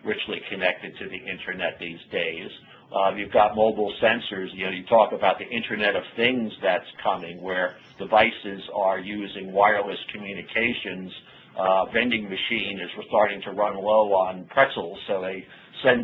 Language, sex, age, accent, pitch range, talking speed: English, male, 50-69, American, 95-110 Hz, 155 wpm